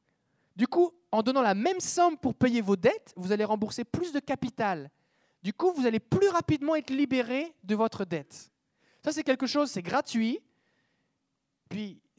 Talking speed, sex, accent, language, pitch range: 170 wpm, male, French, French, 180-260 Hz